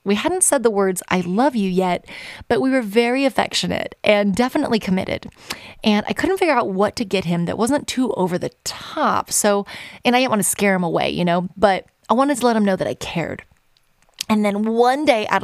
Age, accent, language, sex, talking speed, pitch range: 20-39, American, English, female, 225 wpm, 195-260 Hz